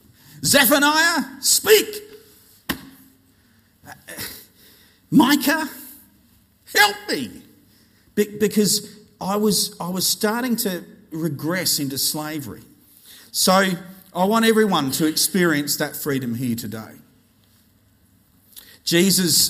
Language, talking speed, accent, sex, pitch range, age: English, 85 wpm, Australian, male, 135-185 Hz, 50-69